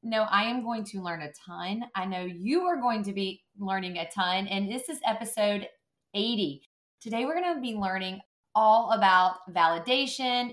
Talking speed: 180 wpm